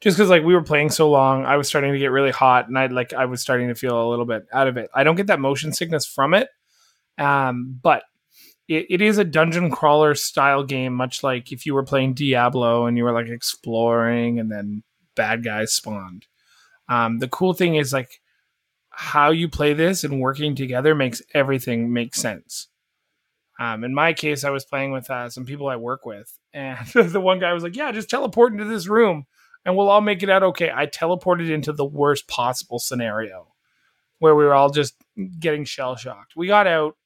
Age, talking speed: 20-39, 210 wpm